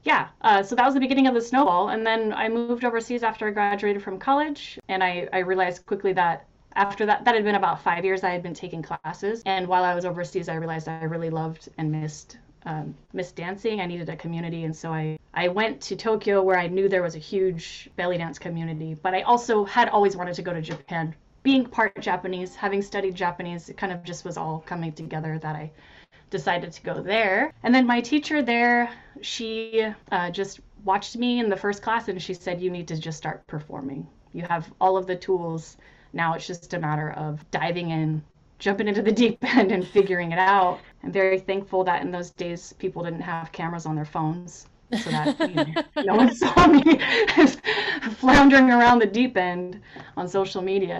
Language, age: English, 20-39